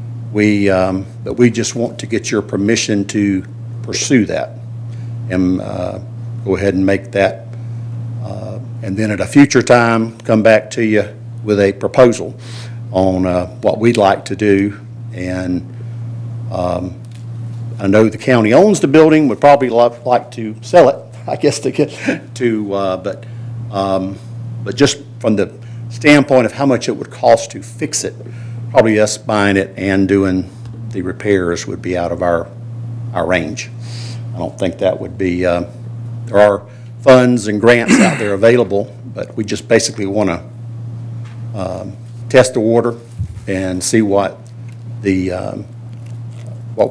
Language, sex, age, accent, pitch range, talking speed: English, male, 50-69, American, 105-115 Hz, 160 wpm